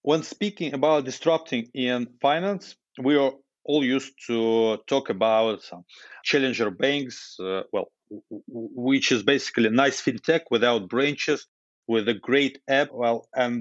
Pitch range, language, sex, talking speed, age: 120-150 Hz, English, male, 150 wpm, 40-59